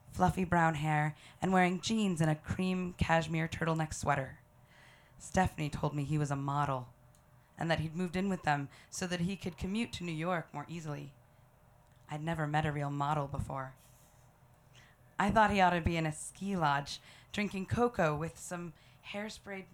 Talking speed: 175 wpm